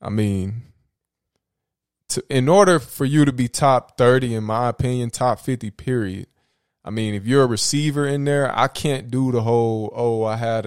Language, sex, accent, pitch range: English, male, American, 105-125 Hz